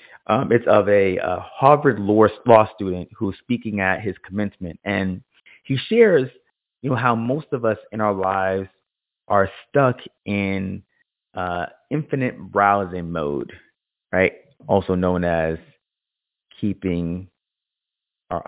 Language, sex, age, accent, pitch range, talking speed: English, male, 30-49, American, 95-115 Hz, 125 wpm